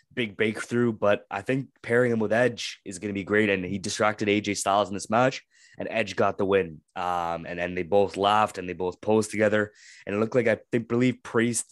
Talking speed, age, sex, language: 235 wpm, 20-39, male, English